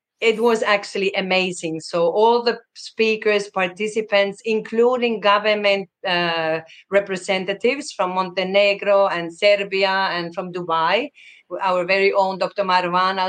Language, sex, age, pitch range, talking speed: English, female, 30-49, 185-220 Hz, 115 wpm